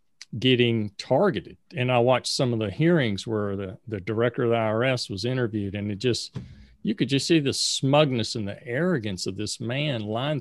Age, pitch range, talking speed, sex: 40-59, 105-135 Hz, 195 wpm, male